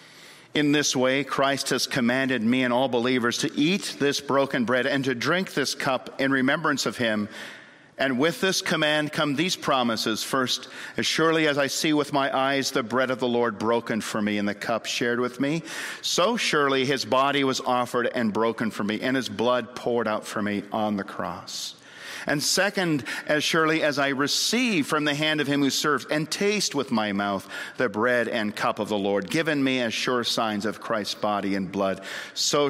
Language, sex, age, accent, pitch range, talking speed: English, male, 50-69, American, 120-155 Hz, 205 wpm